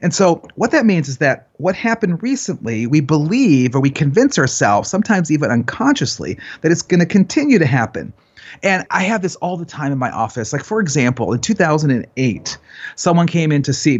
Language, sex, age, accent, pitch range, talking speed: English, male, 40-59, American, 125-170 Hz, 210 wpm